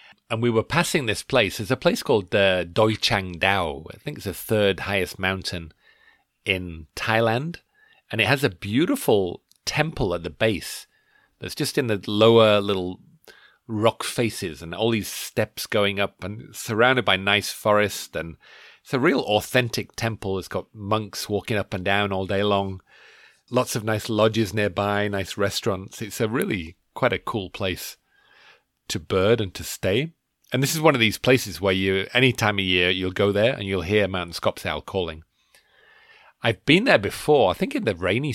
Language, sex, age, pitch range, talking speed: English, male, 40-59, 95-120 Hz, 185 wpm